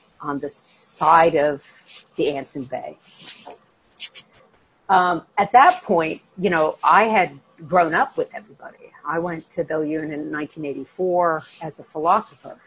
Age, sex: 50-69, female